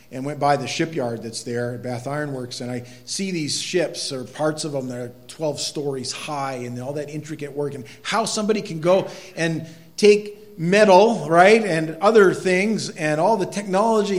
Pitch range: 130-185 Hz